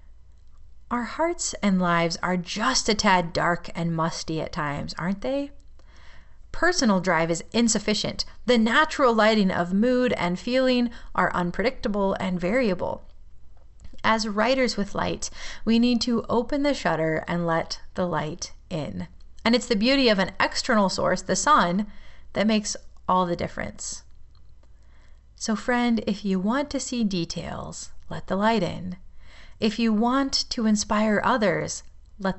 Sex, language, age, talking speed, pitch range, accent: female, English, 30-49, 145 wpm, 175-240 Hz, American